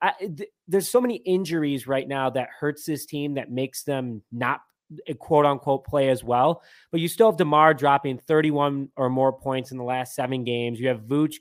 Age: 20-39